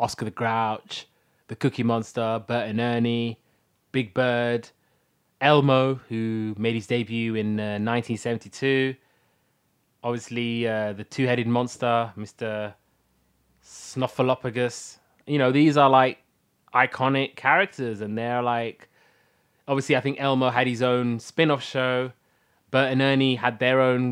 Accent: British